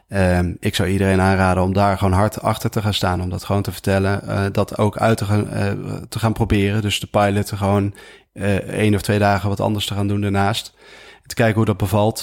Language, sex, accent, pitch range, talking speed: Dutch, male, Dutch, 100-110 Hz, 235 wpm